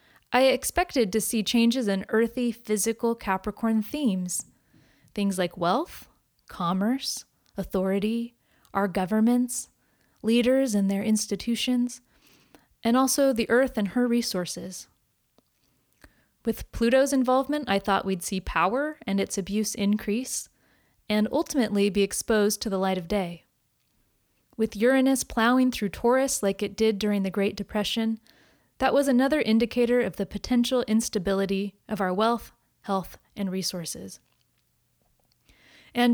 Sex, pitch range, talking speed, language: female, 195-240 Hz, 125 wpm, English